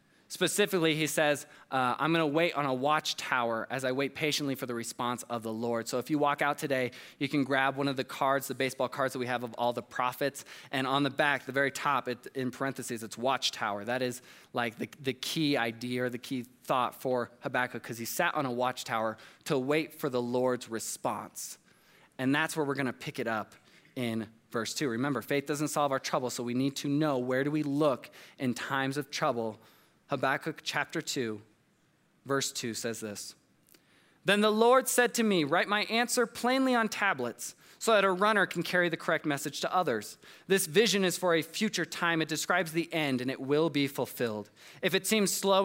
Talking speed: 210 wpm